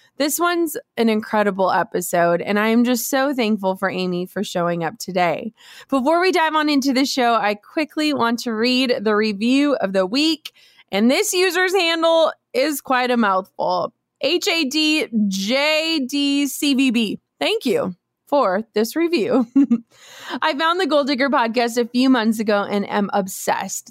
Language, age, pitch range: English, 20-39, 210-285 Hz